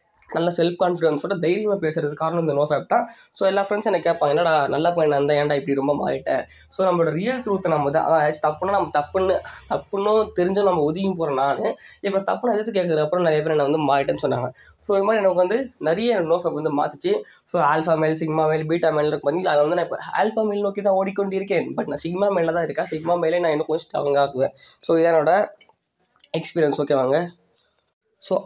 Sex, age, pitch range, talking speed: female, 20-39, 150-185 Hz, 190 wpm